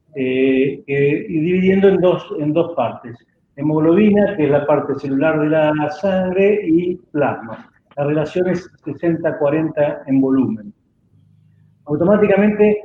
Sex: male